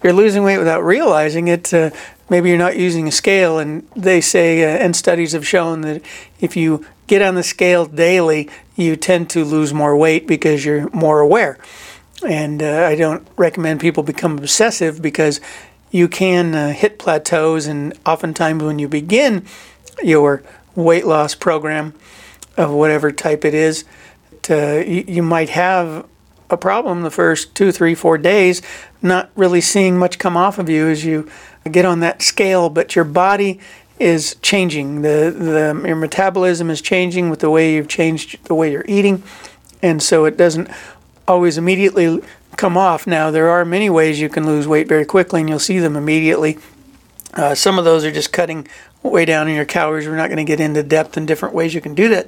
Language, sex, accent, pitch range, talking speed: English, male, American, 155-180 Hz, 185 wpm